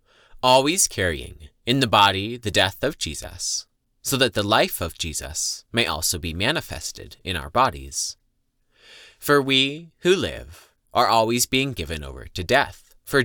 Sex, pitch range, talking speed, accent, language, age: male, 85-125 Hz, 155 wpm, American, English, 30-49